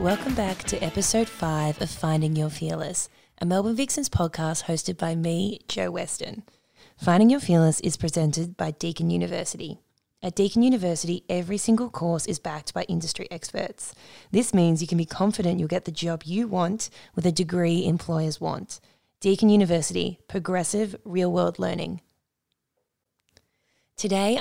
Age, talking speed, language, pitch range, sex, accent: 20-39, 145 wpm, English, 170-200 Hz, female, Australian